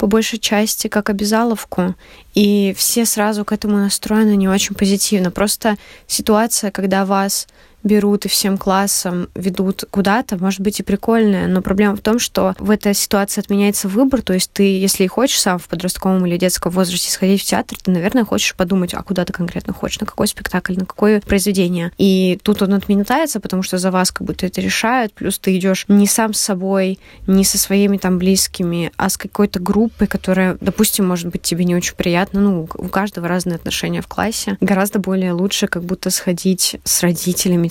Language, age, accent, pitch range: Russian, 20-39, native, 180-210 Hz